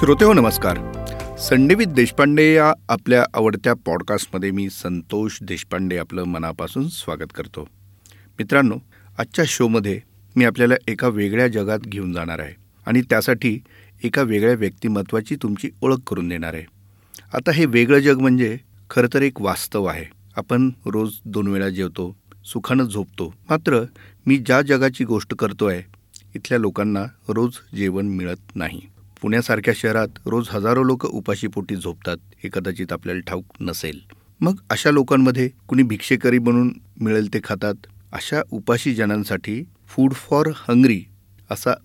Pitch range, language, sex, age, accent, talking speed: 100-125 Hz, Marathi, male, 40-59, native, 130 wpm